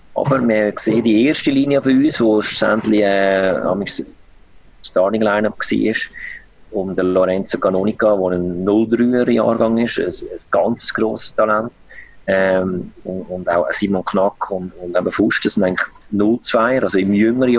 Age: 30-49